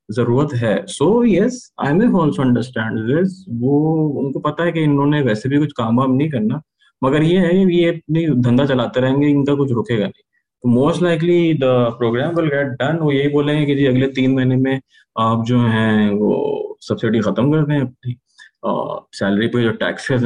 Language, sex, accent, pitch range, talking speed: English, male, Indian, 110-140 Hz, 170 wpm